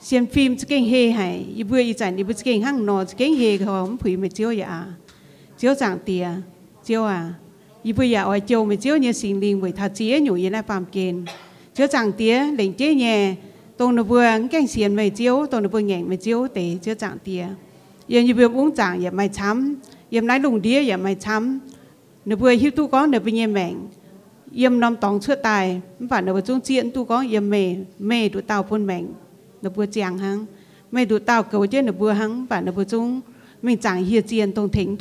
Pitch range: 195-245 Hz